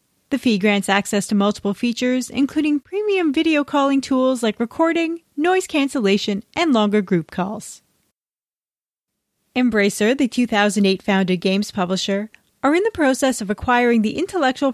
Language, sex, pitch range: English, female, 210-285 Hz